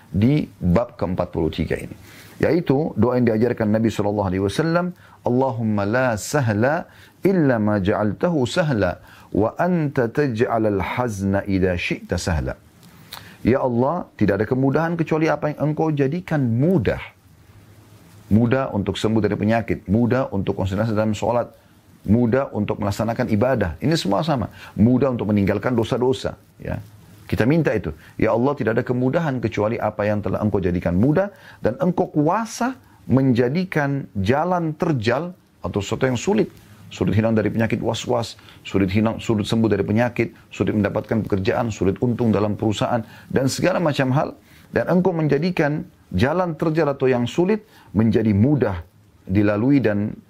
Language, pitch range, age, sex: Indonesian, 105-135 Hz, 40-59, male